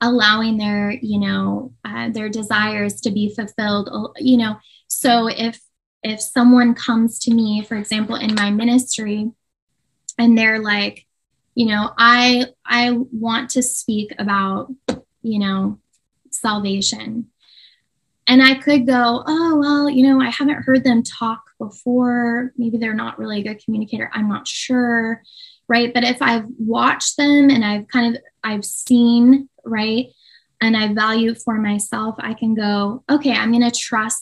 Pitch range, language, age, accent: 215-250 Hz, English, 10-29, American